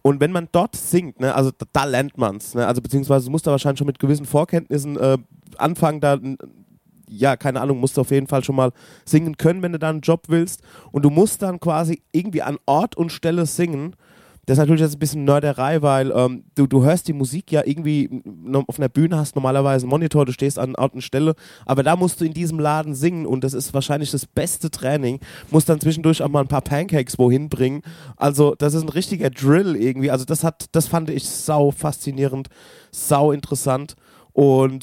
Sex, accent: male, German